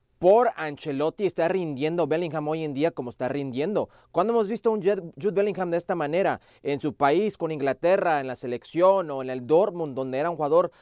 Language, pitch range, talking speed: Spanish, 140-195 Hz, 205 wpm